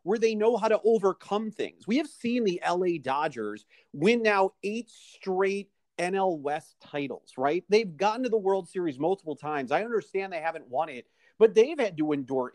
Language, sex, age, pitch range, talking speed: English, male, 40-59, 155-220 Hz, 190 wpm